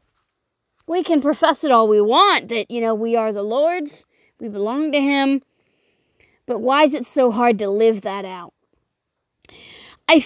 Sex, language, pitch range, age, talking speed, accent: female, English, 230-355 Hz, 30-49, 170 wpm, American